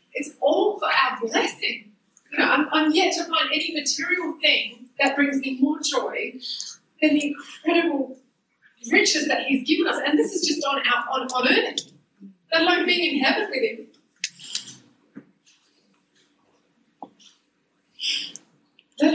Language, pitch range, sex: English, 250-310 Hz, female